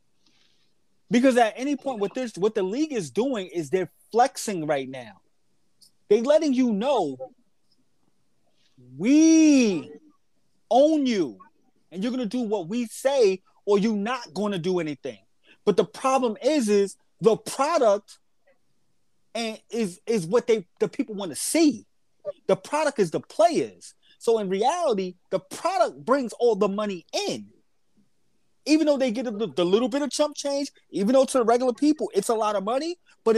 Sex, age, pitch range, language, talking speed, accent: male, 30-49, 195-265 Hz, English, 160 wpm, American